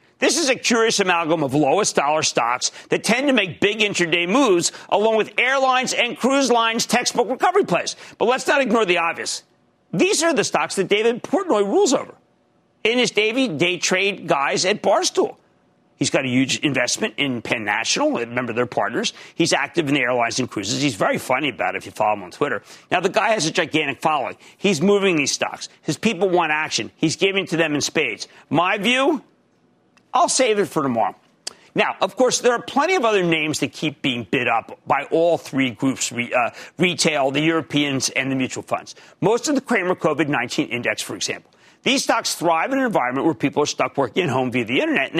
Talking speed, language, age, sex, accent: 210 wpm, English, 40-59, male, American